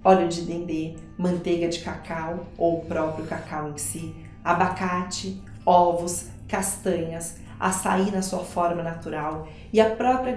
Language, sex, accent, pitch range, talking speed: Portuguese, female, Brazilian, 175-225 Hz, 135 wpm